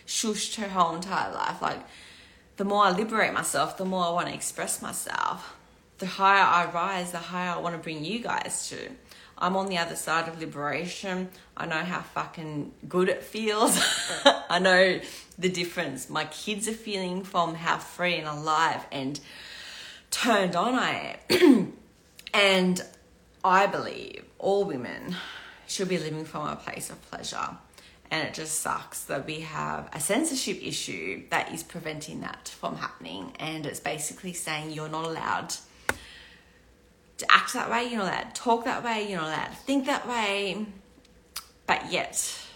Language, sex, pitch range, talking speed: English, female, 155-200 Hz, 170 wpm